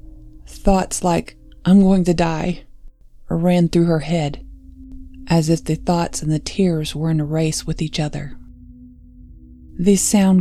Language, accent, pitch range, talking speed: English, American, 130-180 Hz, 150 wpm